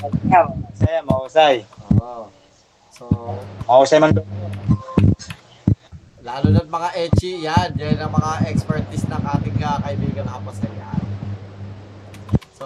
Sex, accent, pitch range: male, native, 105-150 Hz